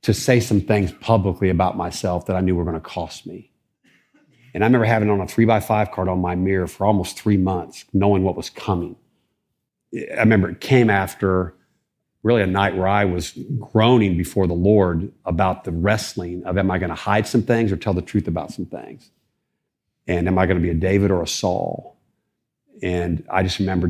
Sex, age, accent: male, 50-69, American